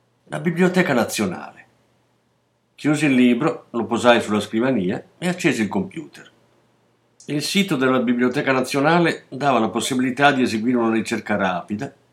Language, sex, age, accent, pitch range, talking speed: Italian, male, 50-69, native, 105-145 Hz, 135 wpm